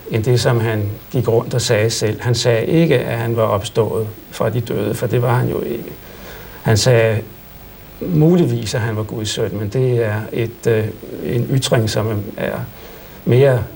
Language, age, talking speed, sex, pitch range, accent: Danish, 60-79, 180 wpm, male, 105-125 Hz, native